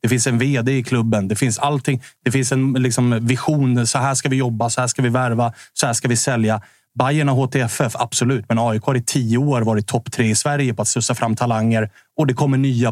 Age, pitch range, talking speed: 30-49, 115-140 Hz, 245 wpm